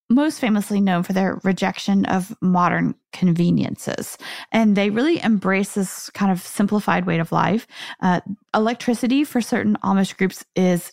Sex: female